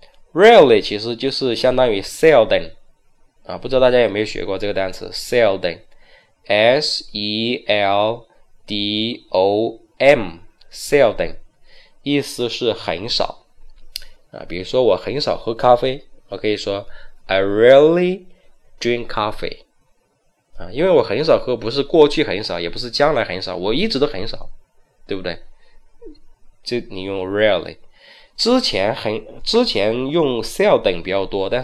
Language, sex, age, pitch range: Chinese, male, 20-39, 105-145 Hz